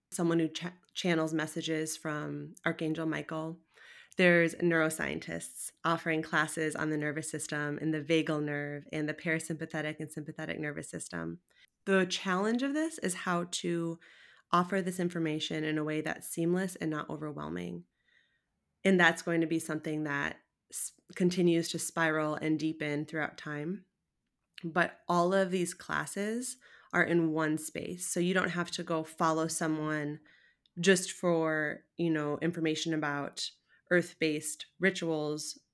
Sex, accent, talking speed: female, American, 140 wpm